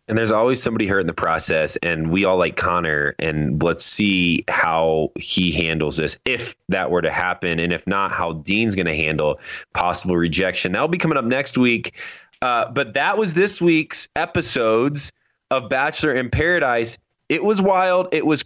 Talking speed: 185 wpm